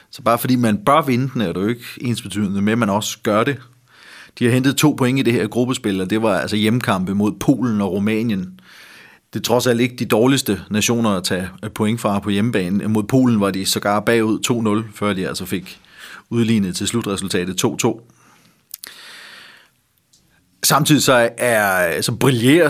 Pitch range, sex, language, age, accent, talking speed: 105-135 Hz, male, Danish, 30-49, native, 180 wpm